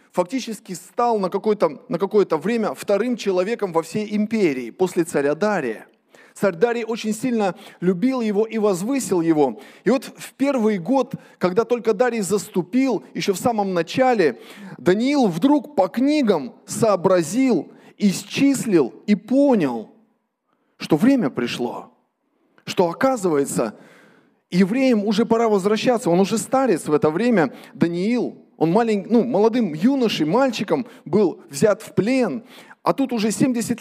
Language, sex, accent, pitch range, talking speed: Russian, male, native, 190-250 Hz, 130 wpm